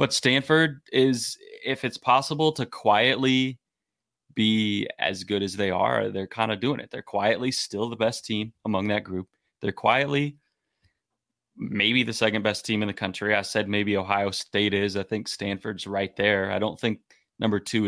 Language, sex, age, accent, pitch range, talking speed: English, male, 20-39, American, 100-120 Hz, 180 wpm